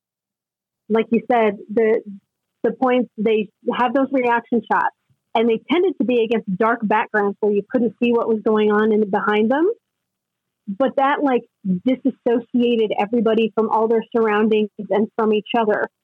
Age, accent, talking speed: 30-49, American, 165 wpm